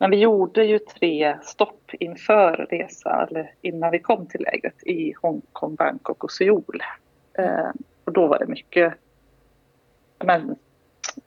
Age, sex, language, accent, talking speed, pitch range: 30-49, female, Swedish, native, 135 wpm, 160-215 Hz